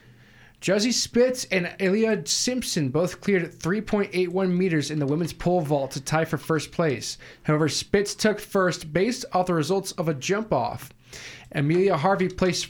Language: English